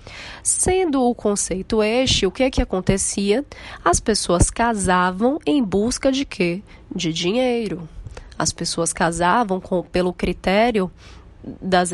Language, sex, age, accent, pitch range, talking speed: Portuguese, female, 20-39, Brazilian, 180-240 Hz, 125 wpm